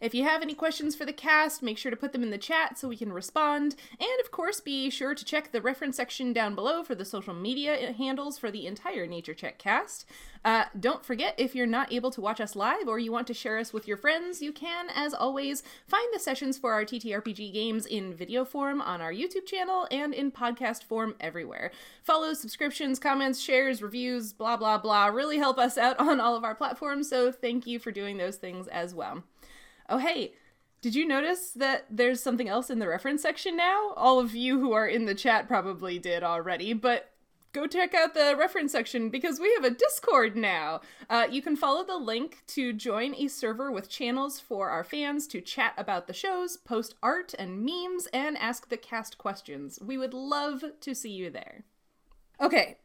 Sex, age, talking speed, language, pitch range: female, 20-39, 210 wpm, English, 225-290 Hz